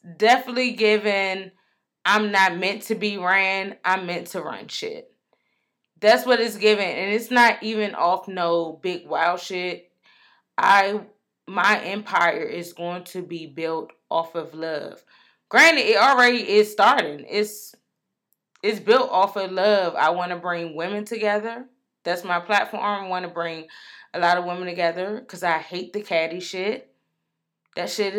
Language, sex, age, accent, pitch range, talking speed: English, female, 20-39, American, 170-210 Hz, 160 wpm